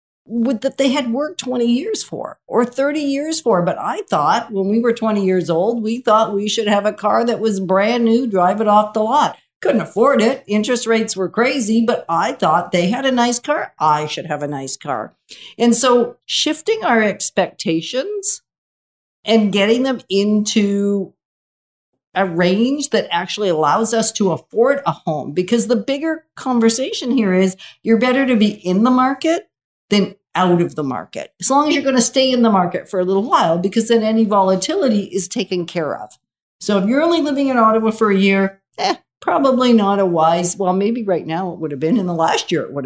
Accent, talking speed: American, 205 wpm